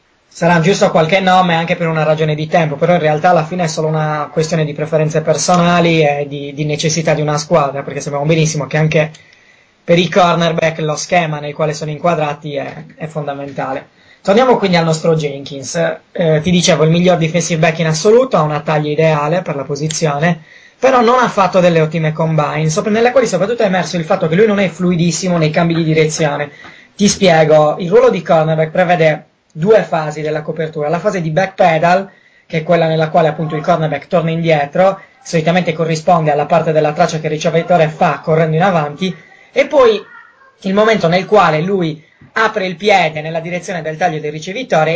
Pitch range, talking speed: 155-190 Hz, 190 wpm